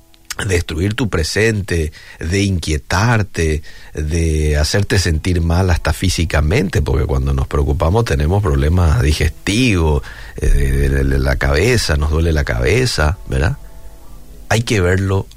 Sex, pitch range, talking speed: male, 75-110 Hz, 110 wpm